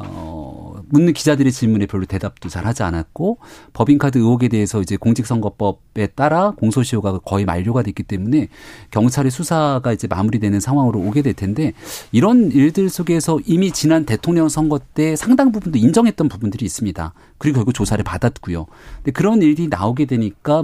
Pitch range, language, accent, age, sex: 115-170 Hz, Korean, native, 40-59, male